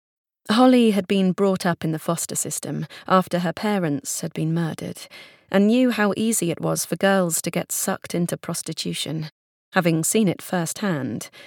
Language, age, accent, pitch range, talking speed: English, 30-49, British, 165-190 Hz, 165 wpm